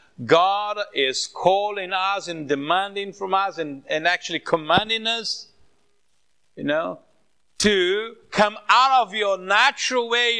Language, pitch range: English, 160-220 Hz